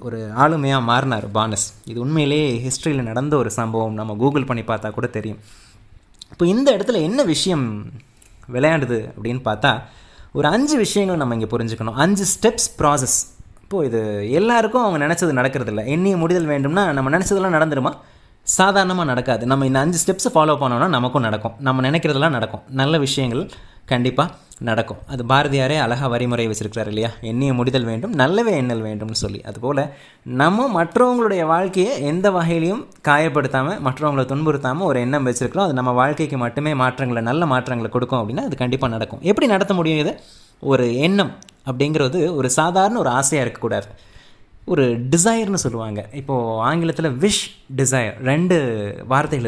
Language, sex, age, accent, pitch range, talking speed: Tamil, male, 20-39, native, 115-160 Hz, 145 wpm